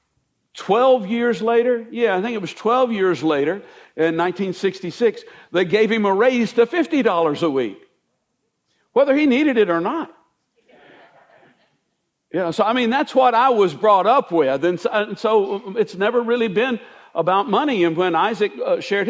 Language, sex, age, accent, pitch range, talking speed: English, male, 60-79, American, 180-245 Hz, 175 wpm